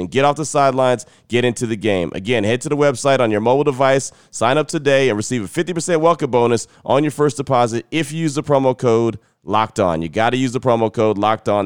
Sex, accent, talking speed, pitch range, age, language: male, American, 245 wpm, 110-135 Hz, 30-49, English